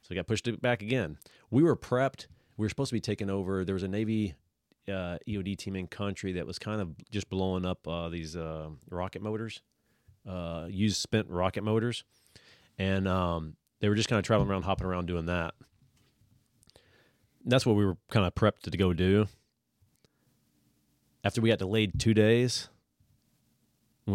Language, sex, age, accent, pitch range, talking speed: English, male, 30-49, American, 95-110 Hz, 180 wpm